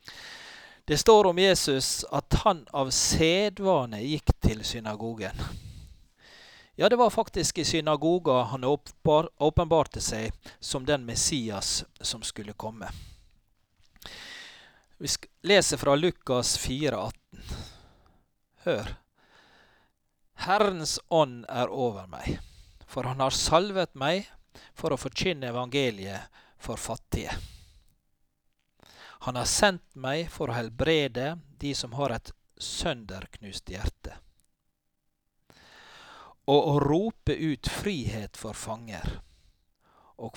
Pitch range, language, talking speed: 105-160 Hz, English, 105 wpm